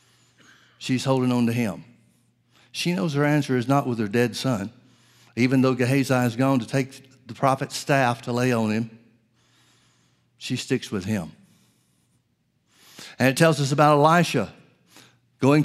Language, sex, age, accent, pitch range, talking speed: English, male, 60-79, American, 125-155 Hz, 155 wpm